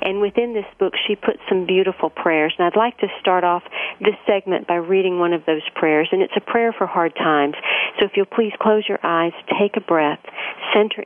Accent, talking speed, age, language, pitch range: American, 220 wpm, 50-69, English, 160-195 Hz